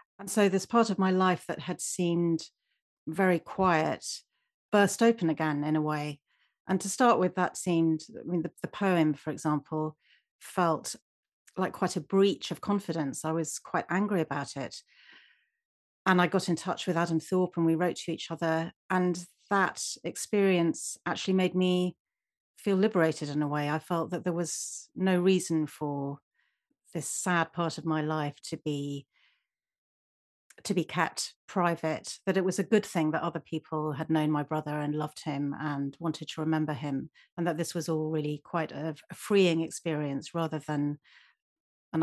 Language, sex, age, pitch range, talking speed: English, female, 40-59, 155-190 Hz, 175 wpm